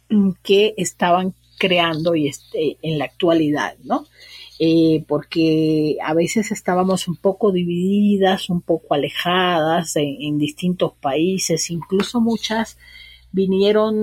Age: 40-59